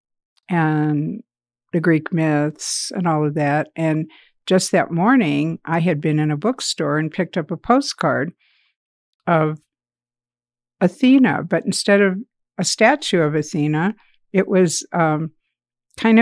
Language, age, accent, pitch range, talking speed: English, 60-79, American, 150-185 Hz, 135 wpm